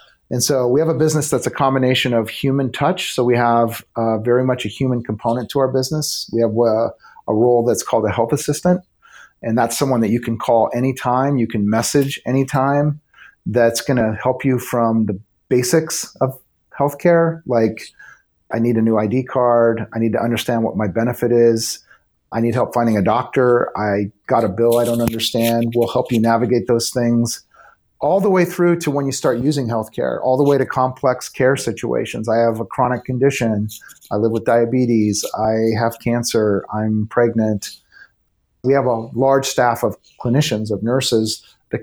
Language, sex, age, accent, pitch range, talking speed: English, male, 40-59, American, 115-130 Hz, 190 wpm